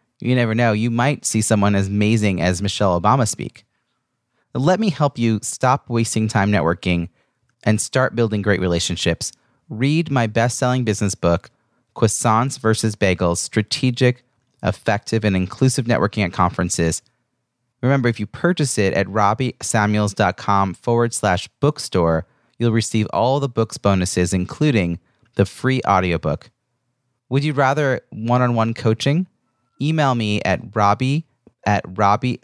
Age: 30-49